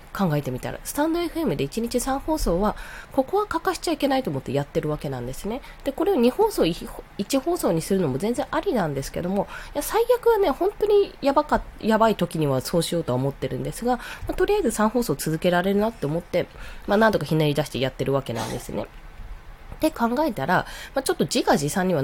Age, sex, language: 20-39, female, Japanese